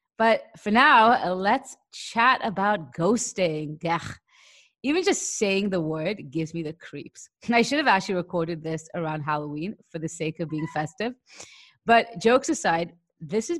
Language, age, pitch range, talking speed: English, 30-49, 155-195 Hz, 155 wpm